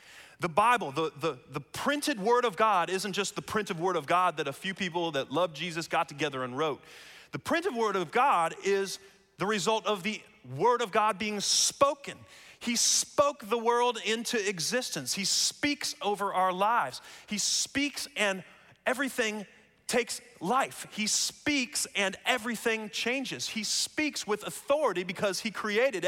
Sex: male